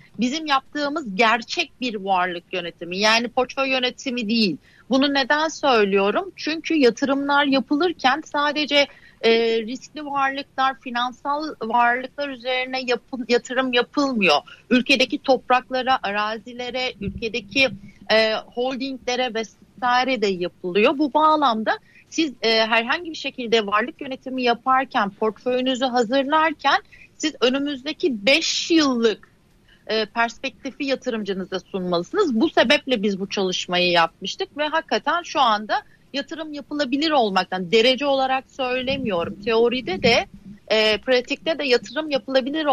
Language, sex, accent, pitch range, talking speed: Turkish, female, native, 220-280 Hz, 105 wpm